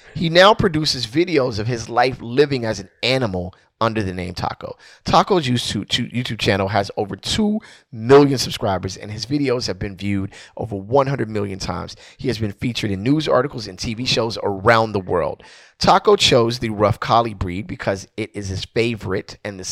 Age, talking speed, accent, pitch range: 30-49, 185 wpm, American, 100-135 Hz